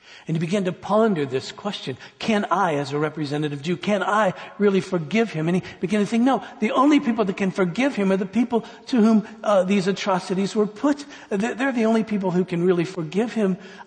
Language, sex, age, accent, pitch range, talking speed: English, male, 60-79, American, 135-200 Hz, 215 wpm